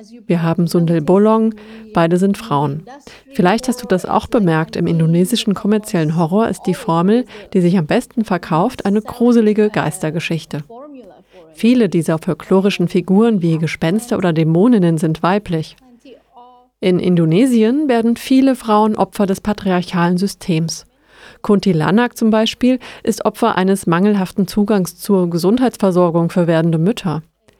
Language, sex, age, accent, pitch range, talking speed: German, female, 30-49, German, 175-225 Hz, 135 wpm